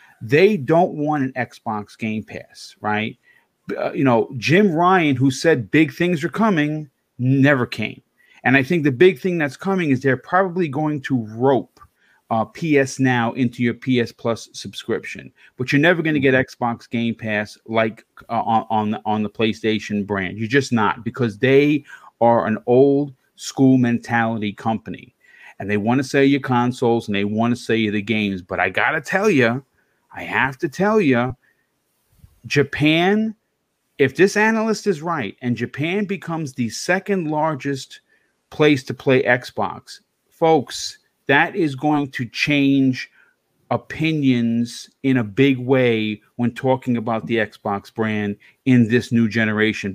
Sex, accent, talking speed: male, American, 160 wpm